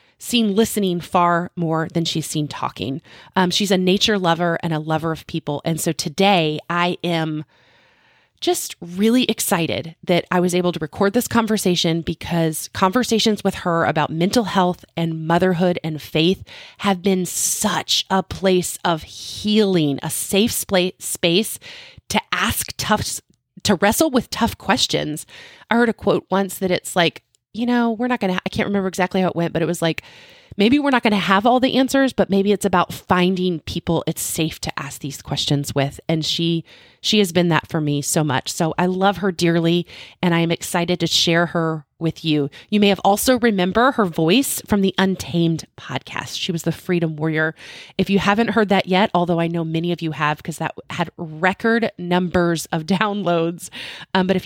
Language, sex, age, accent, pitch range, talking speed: English, female, 30-49, American, 165-200 Hz, 190 wpm